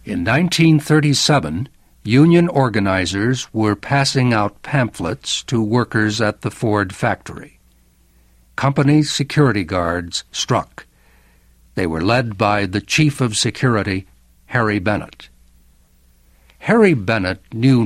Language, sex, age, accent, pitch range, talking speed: English, male, 60-79, American, 75-125 Hz, 105 wpm